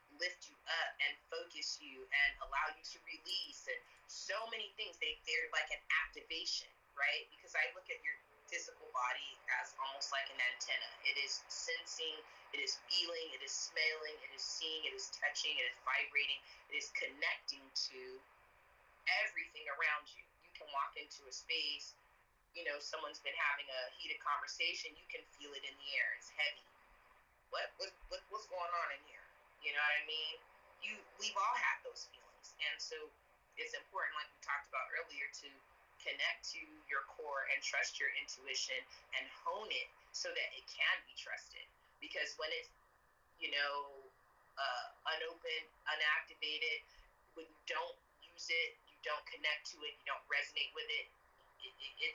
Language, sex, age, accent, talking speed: English, female, 20-39, American, 175 wpm